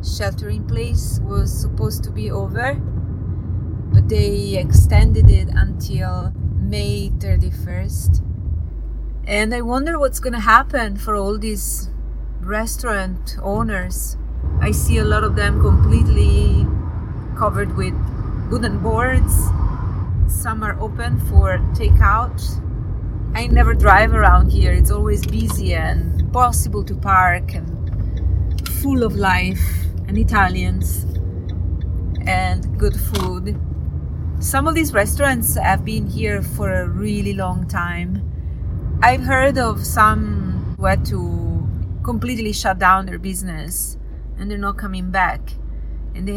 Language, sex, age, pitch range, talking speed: English, female, 30-49, 85-105 Hz, 120 wpm